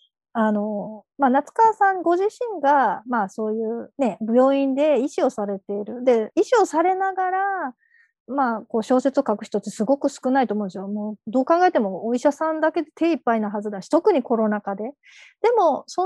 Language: Japanese